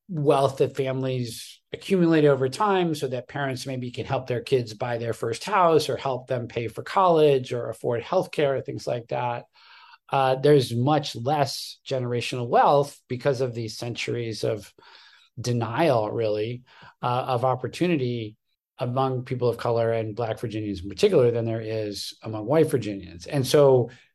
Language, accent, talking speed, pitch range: English, American, 160 wpm, 120-145 Hz